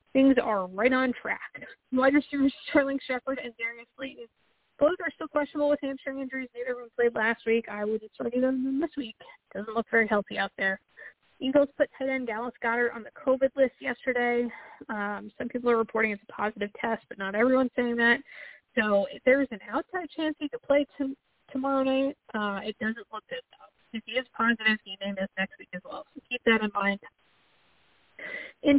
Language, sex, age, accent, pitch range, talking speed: English, female, 20-39, American, 215-265 Hz, 200 wpm